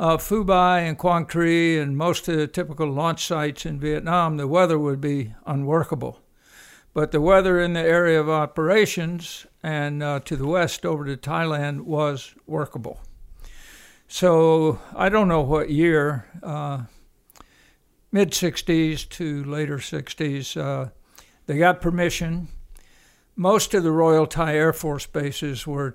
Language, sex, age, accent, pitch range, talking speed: English, male, 60-79, American, 140-170 Hz, 140 wpm